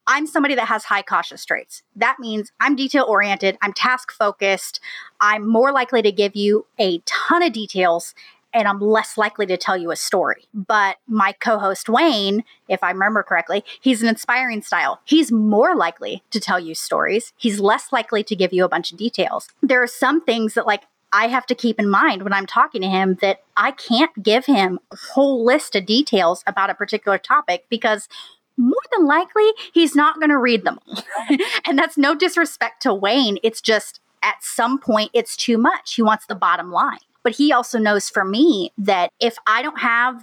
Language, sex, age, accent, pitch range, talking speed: English, female, 30-49, American, 205-265 Hz, 195 wpm